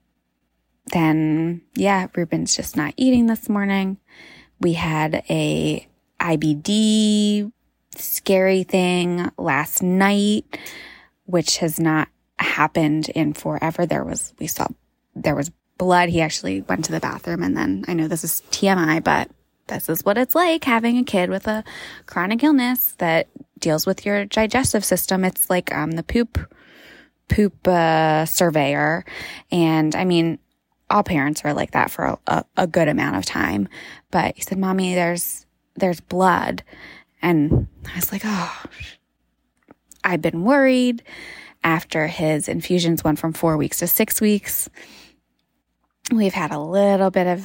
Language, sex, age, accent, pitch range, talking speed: English, female, 20-39, American, 160-205 Hz, 150 wpm